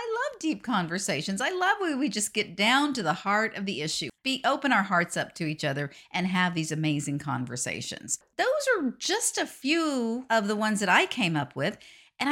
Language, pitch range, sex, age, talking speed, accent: English, 175-255 Hz, female, 50-69, 205 wpm, American